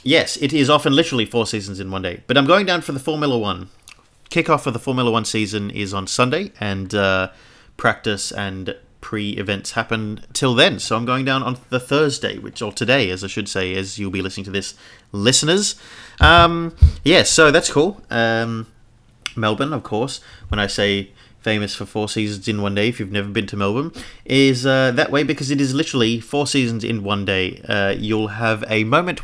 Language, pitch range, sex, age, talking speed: English, 105-135 Hz, male, 30-49, 205 wpm